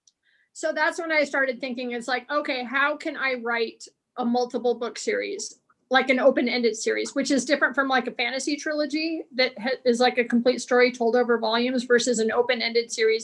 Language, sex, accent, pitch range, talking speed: English, female, American, 245-280 Hz, 200 wpm